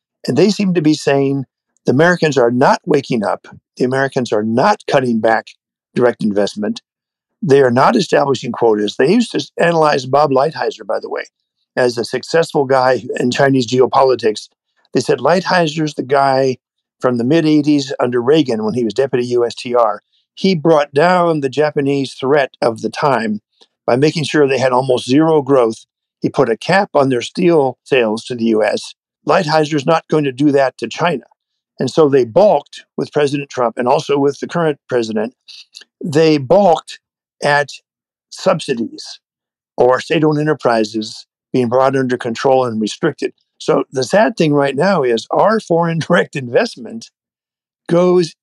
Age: 50-69